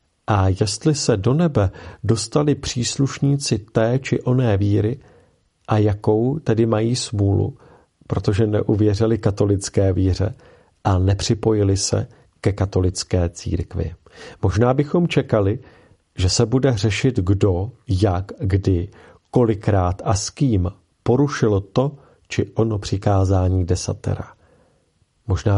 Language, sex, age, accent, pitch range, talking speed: Czech, male, 40-59, native, 95-120 Hz, 110 wpm